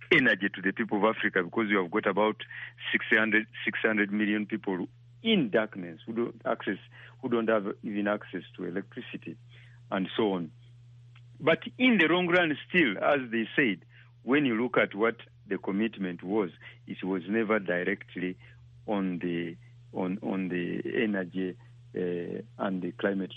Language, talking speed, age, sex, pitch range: English, 155 wpm, 50-69, male, 100-125 Hz